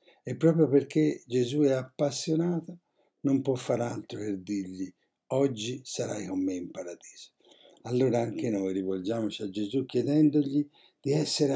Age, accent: 60-79, native